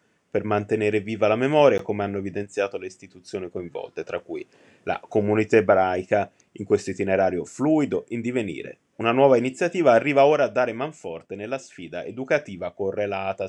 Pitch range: 105-135 Hz